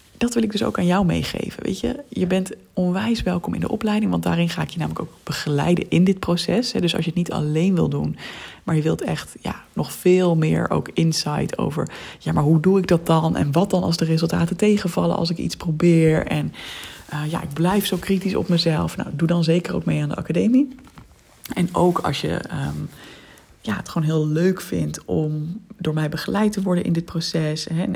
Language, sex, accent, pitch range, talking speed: Dutch, female, Dutch, 165-195 Hz, 220 wpm